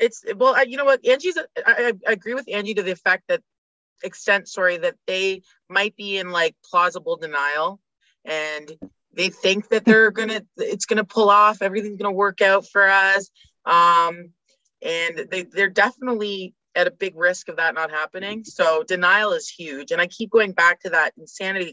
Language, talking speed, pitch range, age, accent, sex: English, 190 wpm, 180-255 Hz, 20-39, American, female